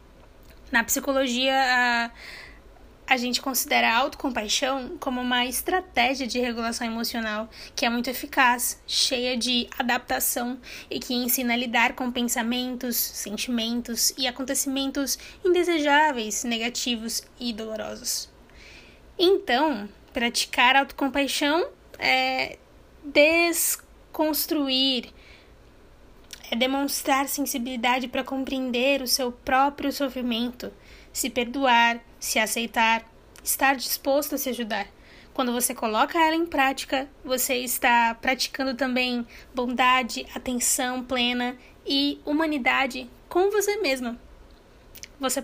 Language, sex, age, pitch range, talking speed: Portuguese, female, 20-39, 240-275 Hz, 100 wpm